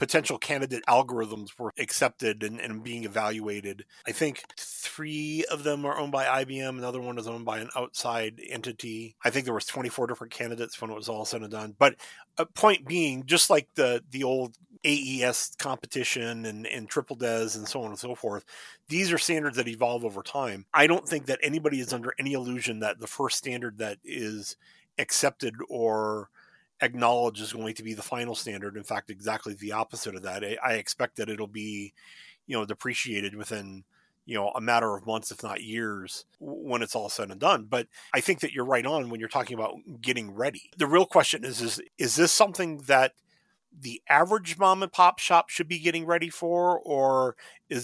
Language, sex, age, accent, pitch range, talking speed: English, male, 30-49, American, 110-155 Hz, 200 wpm